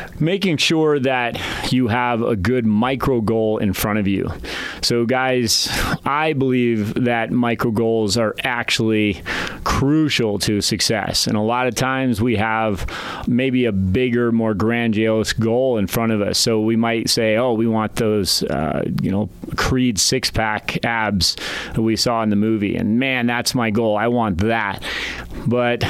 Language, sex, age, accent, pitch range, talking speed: English, male, 30-49, American, 110-125 Hz, 165 wpm